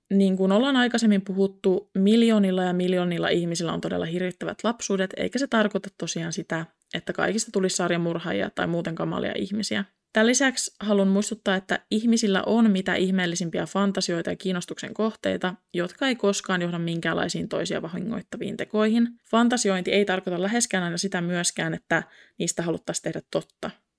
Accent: native